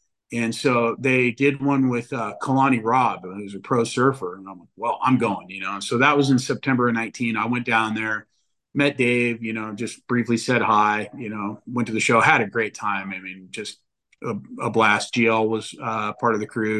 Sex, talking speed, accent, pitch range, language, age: male, 225 wpm, American, 105-135 Hz, English, 40-59